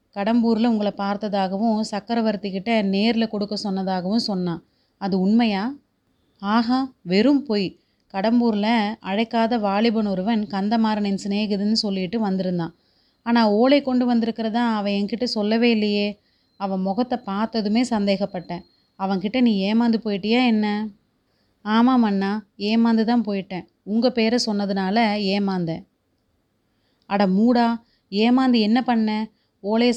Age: 30-49